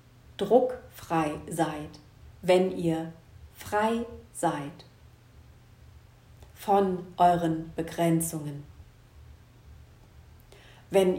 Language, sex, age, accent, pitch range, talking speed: German, female, 40-59, German, 155-185 Hz, 55 wpm